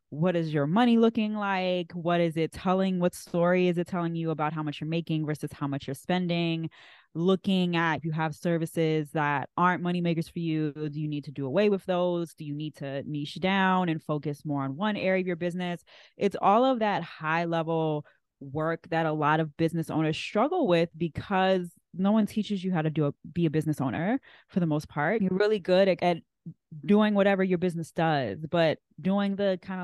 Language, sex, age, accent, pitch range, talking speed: English, female, 20-39, American, 155-180 Hz, 215 wpm